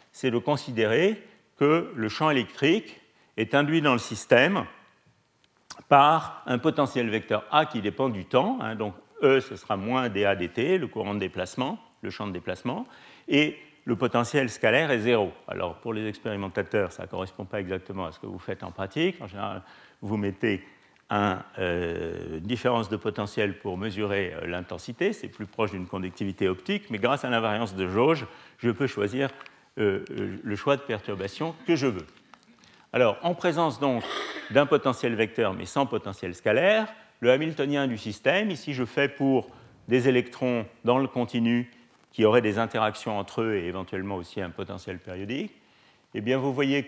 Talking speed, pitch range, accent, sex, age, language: 170 wpm, 100-135 Hz, French, male, 50-69, French